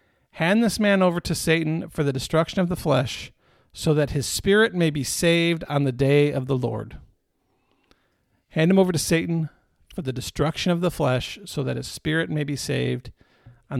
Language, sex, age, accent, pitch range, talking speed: English, male, 50-69, American, 150-220 Hz, 190 wpm